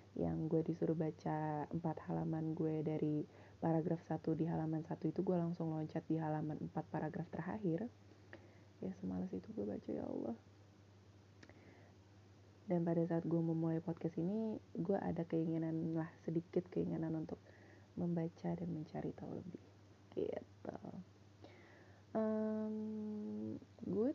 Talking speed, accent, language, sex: 125 wpm, native, Indonesian, female